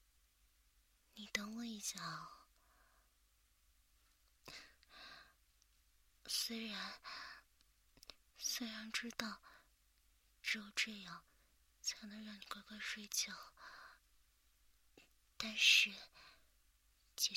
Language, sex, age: Chinese, female, 30-49